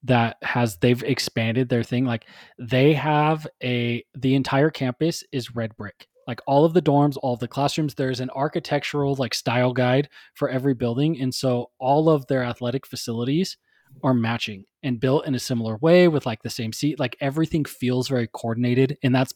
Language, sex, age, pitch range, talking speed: English, male, 20-39, 120-145 Hz, 190 wpm